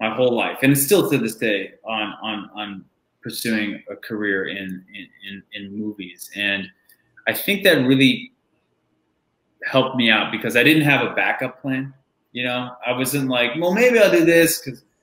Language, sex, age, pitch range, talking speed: English, male, 20-39, 110-140 Hz, 185 wpm